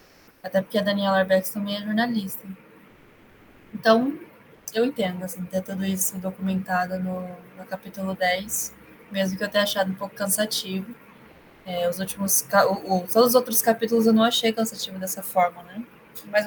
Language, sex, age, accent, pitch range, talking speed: Portuguese, female, 20-39, Brazilian, 190-225 Hz, 155 wpm